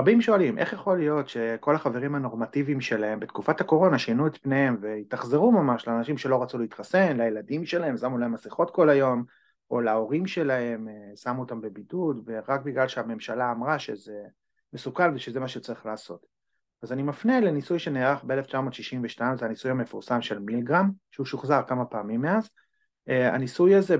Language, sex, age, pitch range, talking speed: Hebrew, male, 30-49, 120-150 Hz, 155 wpm